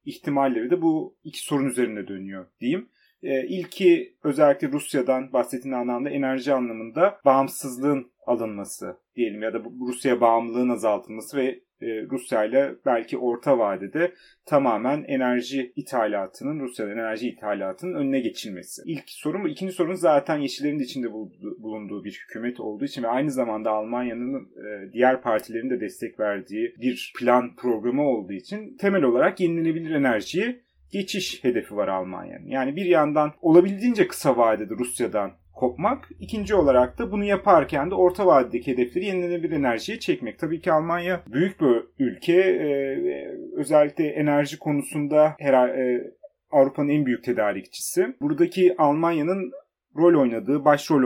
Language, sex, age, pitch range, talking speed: Turkish, male, 30-49, 120-180 Hz, 130 wpm